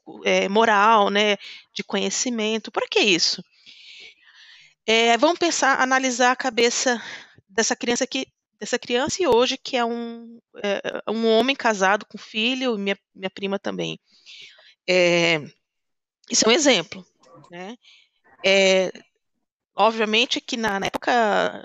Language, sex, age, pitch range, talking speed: Portuguese, female, 20-39, 200-260 Hz, 125 wpm